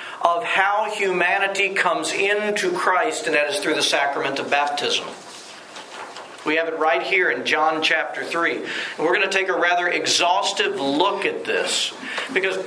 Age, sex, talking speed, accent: 50-69, male, 160 wpm, American